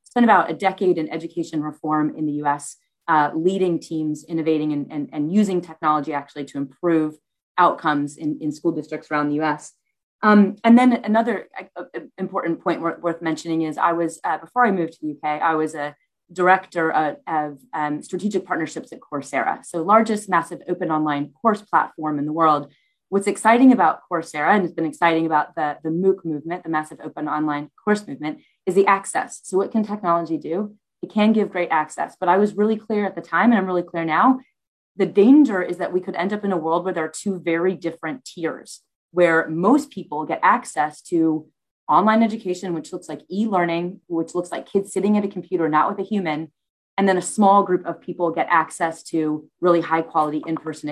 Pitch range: 155-190 Hz